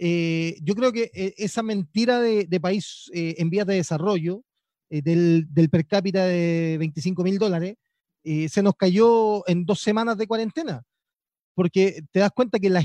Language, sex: Spanish, male